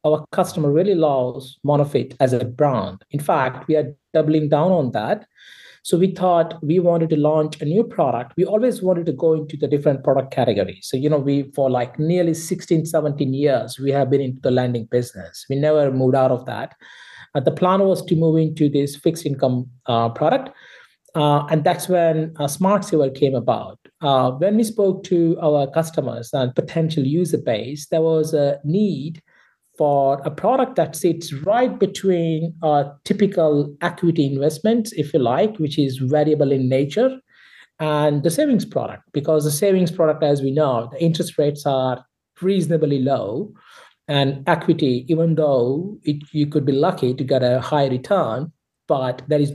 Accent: Indian